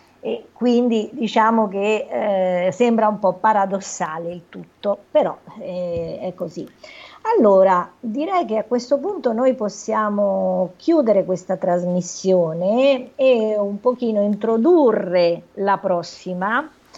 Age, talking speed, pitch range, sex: 50-69, 115 wpm, 180-225 Hz, female